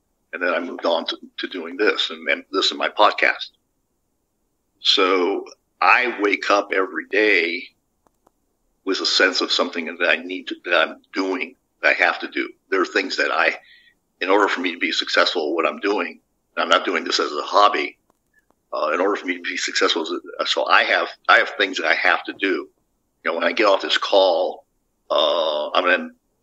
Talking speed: 210 wpm